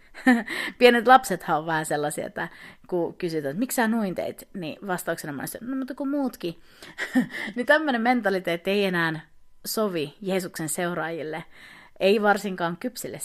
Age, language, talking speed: 30-49, Finnish, 130 wpm